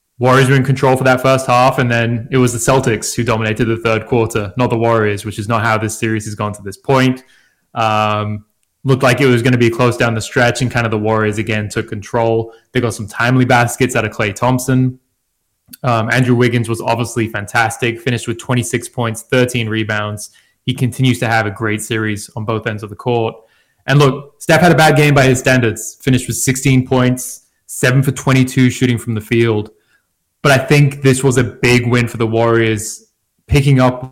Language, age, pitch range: English, 20-39, 115-130 Hz